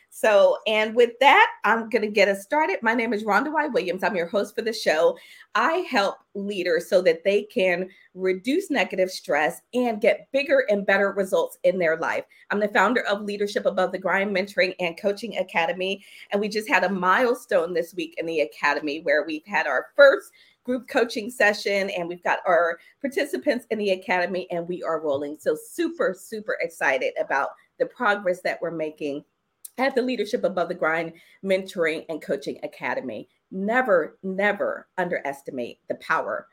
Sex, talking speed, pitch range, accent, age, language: female, 180 wpm, 185-280 Hz, American, 40-59, English